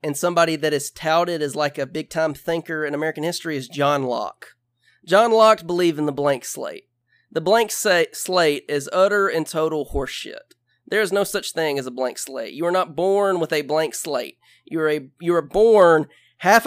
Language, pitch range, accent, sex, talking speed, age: English, 140-185 Hz, American, male, 195 wpm, 30-49